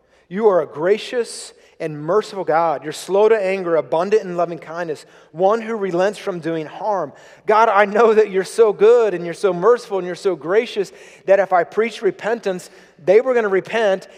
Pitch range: 175-240 Hz